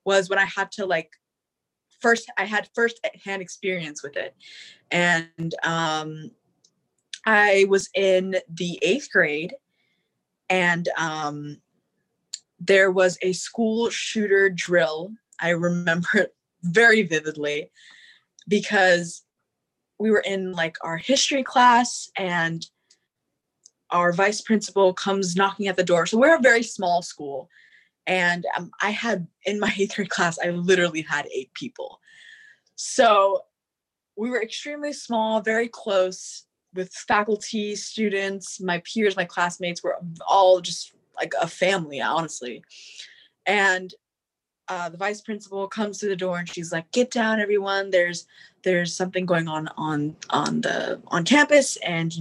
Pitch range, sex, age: 170-210 Hz, female, 20-39